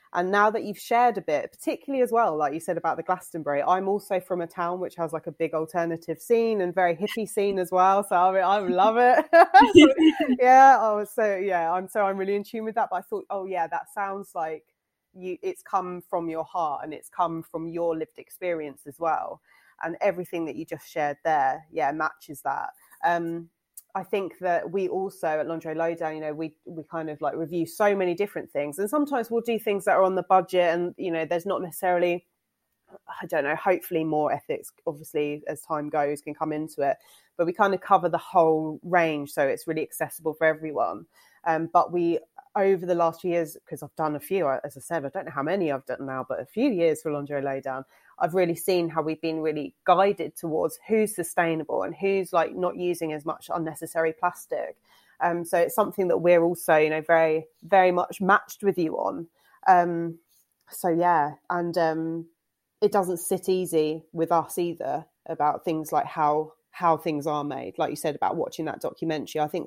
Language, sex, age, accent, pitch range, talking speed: English, female, 20-39, British, 160-195 Hz, 215 wpm